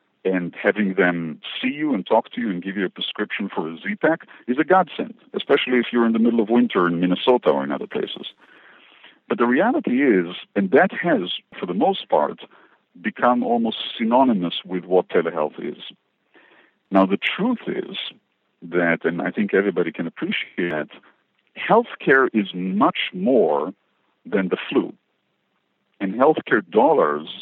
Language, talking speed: English, 160 wpm